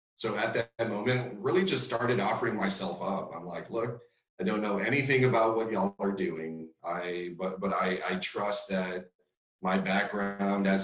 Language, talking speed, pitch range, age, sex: English, 175 wpm, 90-130 Hz, 40-59, male